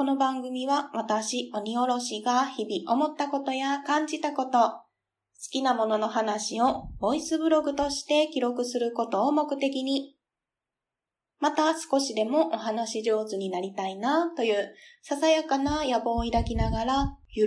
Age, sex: 20-39, female